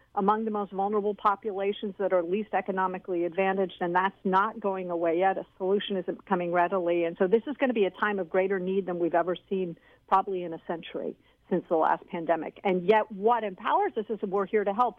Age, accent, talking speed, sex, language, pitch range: 50-69, American, 220 wpm, female, English, 185-230 Hz